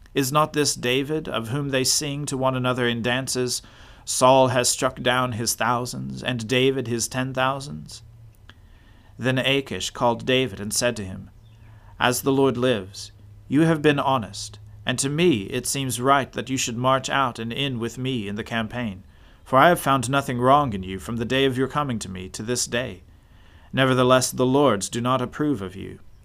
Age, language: 40-59, English